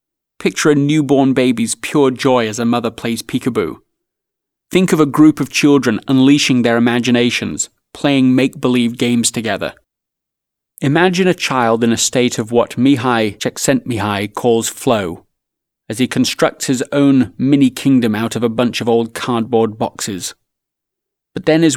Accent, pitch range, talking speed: British, 120-150 Hz, 145 wpm